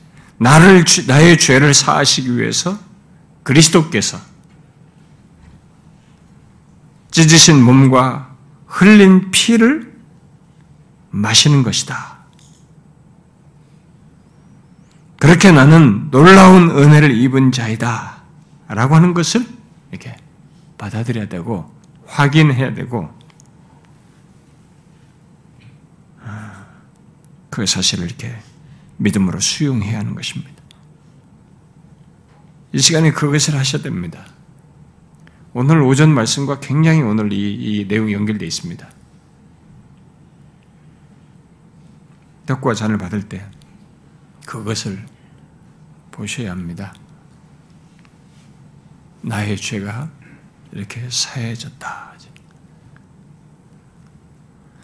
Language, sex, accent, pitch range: Korean, male, native, 125-165 Hz